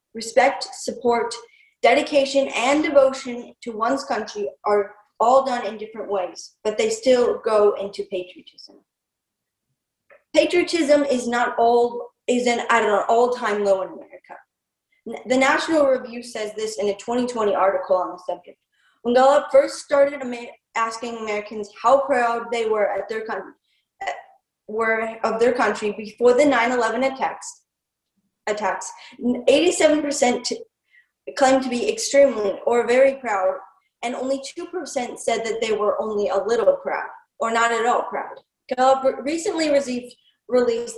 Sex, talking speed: female, 135 wpm